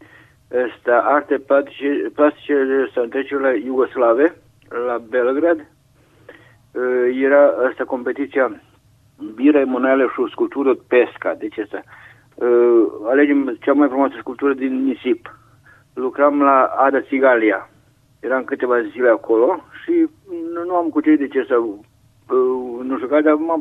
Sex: male